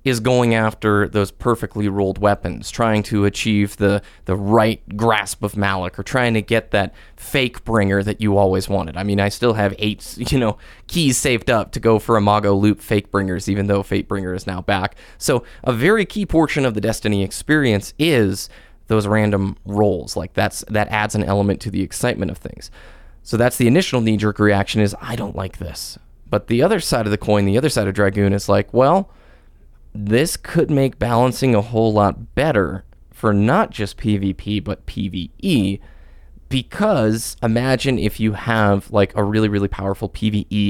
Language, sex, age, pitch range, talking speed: English, male, 20-39, 100-115 Hz, 185 wpm